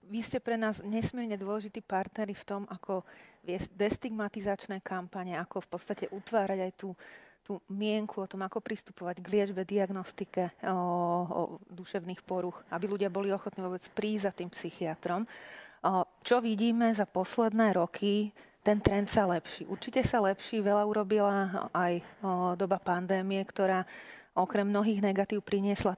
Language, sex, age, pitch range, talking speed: Slovak, female, 30-49, 185-205 Hz, 150 wpm